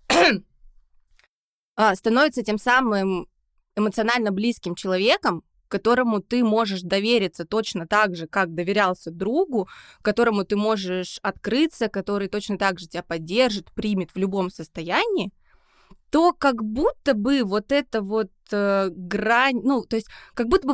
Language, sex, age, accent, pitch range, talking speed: Russian, female, 20-39, native, 200-250 Hz, 130 wpm